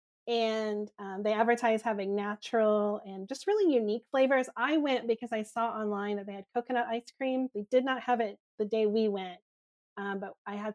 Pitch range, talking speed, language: 200-240 Hz, 200 wpm, English